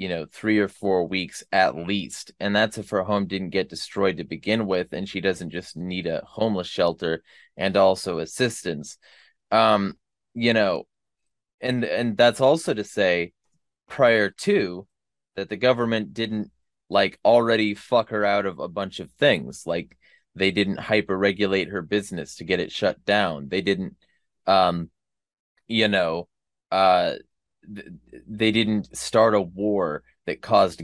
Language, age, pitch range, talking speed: English, 20-39, 90-105 Hz, 155 wpm